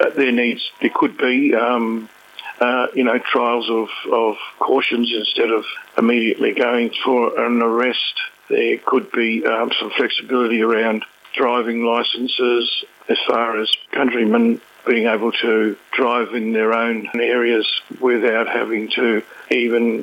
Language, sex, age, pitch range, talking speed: English, male, 50-69, 115-125 Hz, 135 wpm